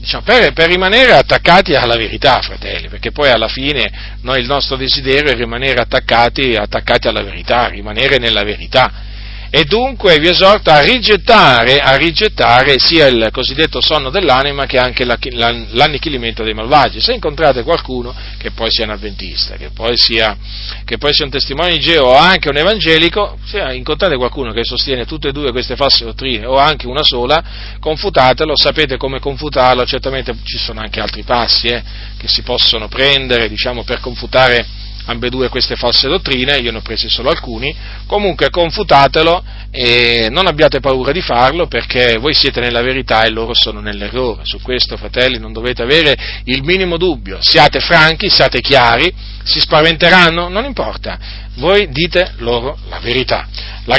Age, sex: 40-59, male